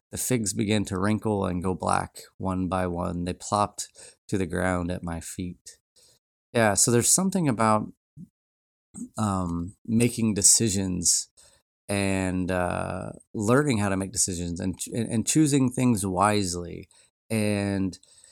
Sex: male